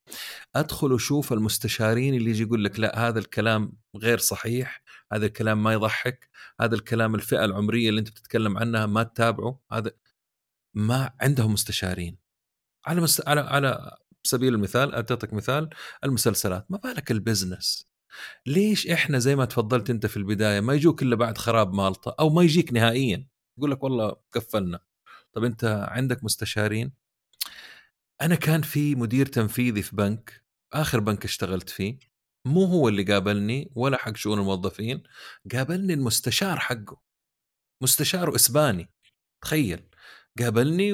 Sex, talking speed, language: male, 140 wpm, Arabic